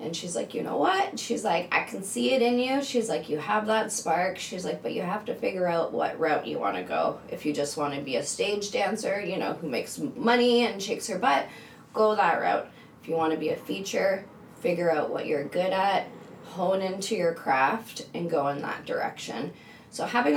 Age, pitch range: 20-39, 150-215 Hz